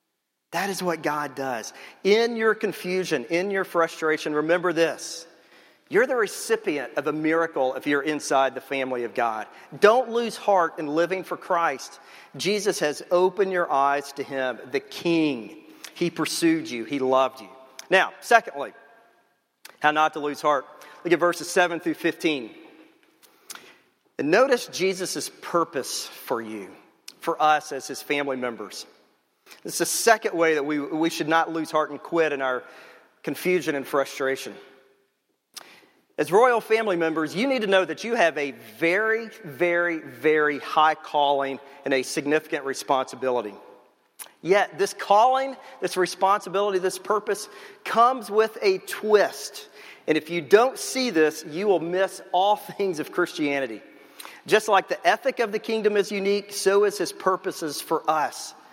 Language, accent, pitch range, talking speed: English, American, 145-200 Hz, 155 wpm